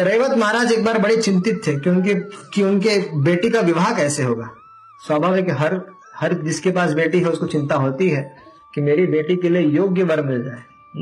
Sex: male